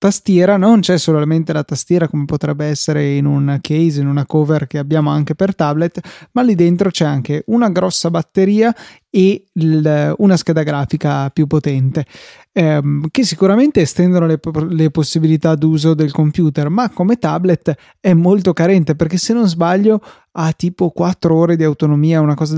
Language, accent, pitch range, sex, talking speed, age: Italian, native, 155-185 Hz, male, 165 wpm, 20-39